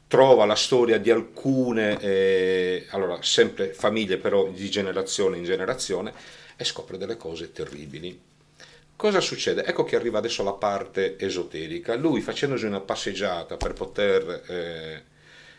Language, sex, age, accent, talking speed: Italian, male, 40-59, native, 130 wpm